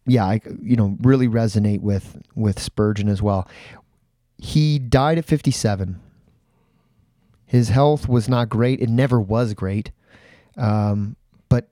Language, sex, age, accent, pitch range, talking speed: English, male, 30-49, American, 105-120 Hz, 135 wpm